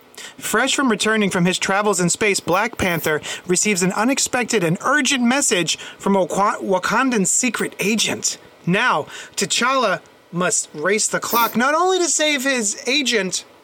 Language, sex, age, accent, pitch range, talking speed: English, male, 30-49, American, 190-250 Hz, 140 wpm